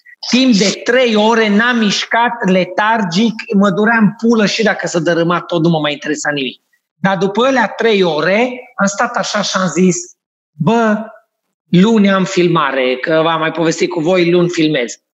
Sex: male